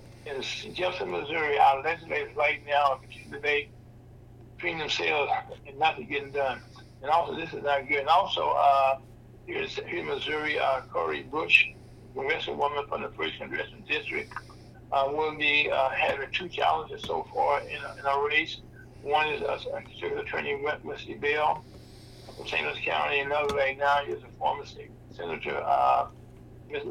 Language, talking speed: English, 165 wpm